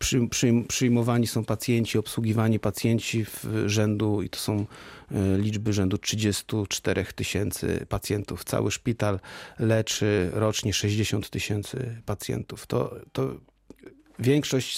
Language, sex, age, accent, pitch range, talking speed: Polish, male, 40-59, native, 105-125 Hz, 105 wpm